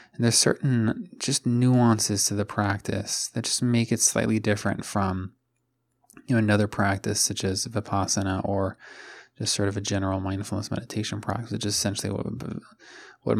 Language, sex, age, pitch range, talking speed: English, male, 20-39, 100-120 Hz, 155 wpm